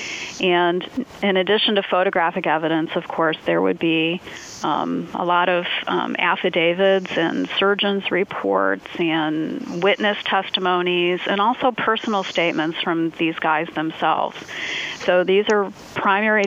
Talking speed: 130 wpm